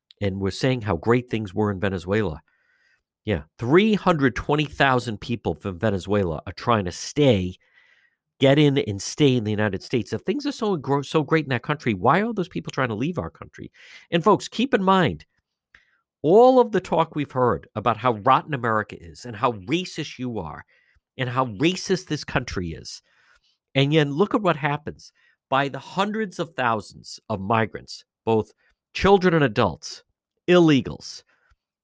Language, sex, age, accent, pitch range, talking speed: English, male, 50-69, American, 100-155 Hz, 170 wpm